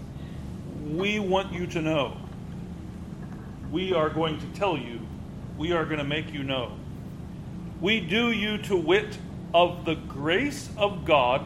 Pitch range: 150-185 Hz